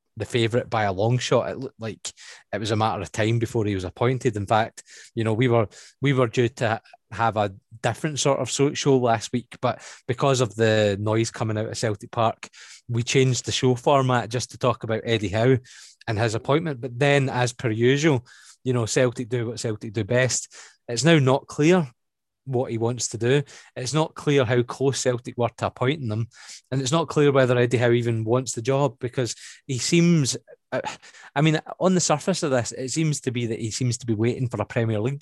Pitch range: 115-135 Hz